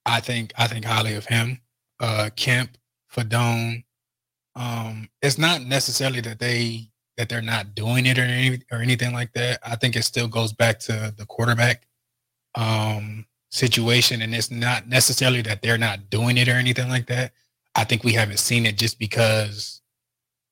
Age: 20-39